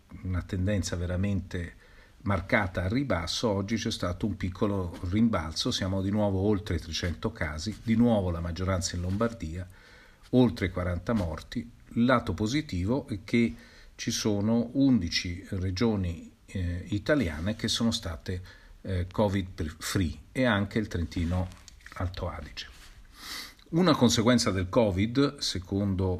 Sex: male